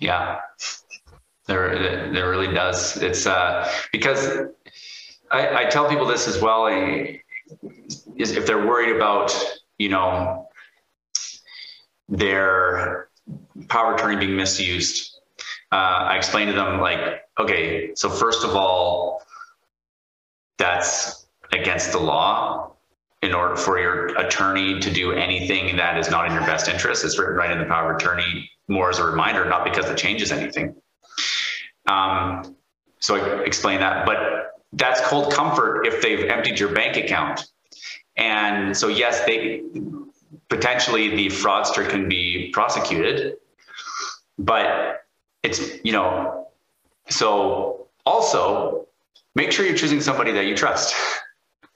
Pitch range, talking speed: 90-130 Hz, 130 wpm